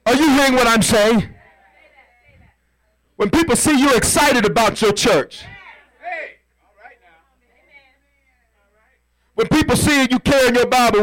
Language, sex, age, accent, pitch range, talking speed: English, male, 50-69, American, 195-275 Hz, 115 wpm